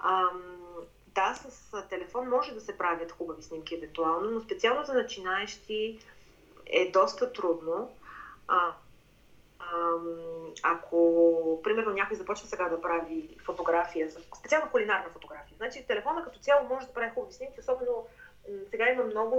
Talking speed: 135 wpm